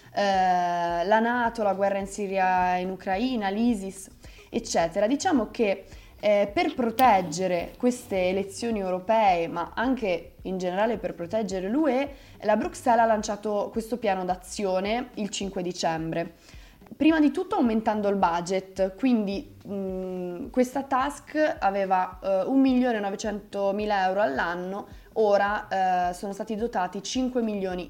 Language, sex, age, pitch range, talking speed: Italian, female, 20-39, 185-245 Hz, 120 wpm